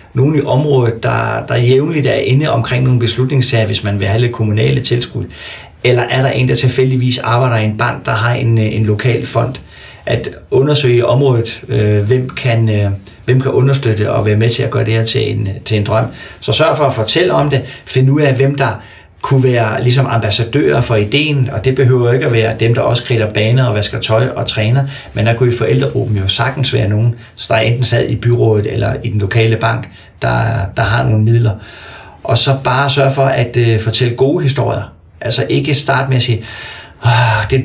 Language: Danish